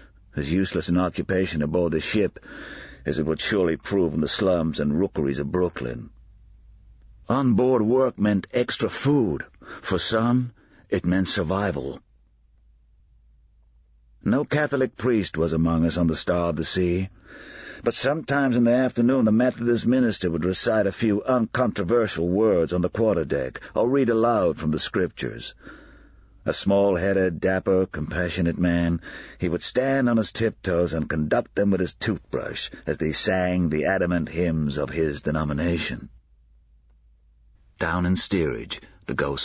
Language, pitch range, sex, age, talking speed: English, 75-105 Hz, male, 50-69, 145 wpm